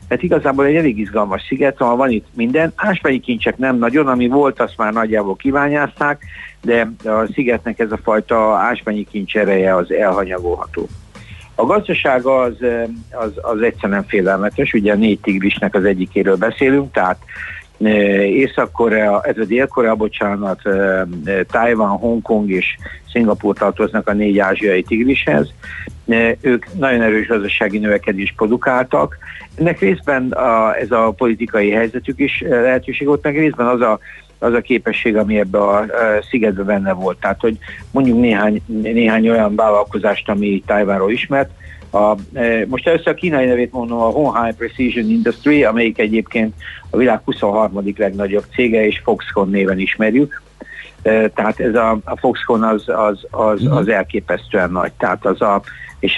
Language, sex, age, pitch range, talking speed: Hungarian, male, 60-79, 100-120 Hz, 140 wpm